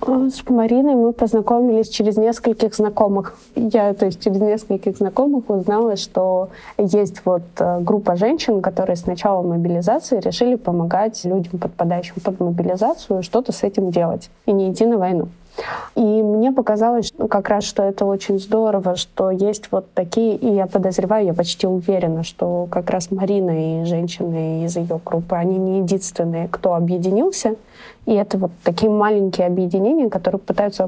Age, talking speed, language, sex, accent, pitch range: 20-39, 155 wpm, Russian, female, native, 185-225 Hz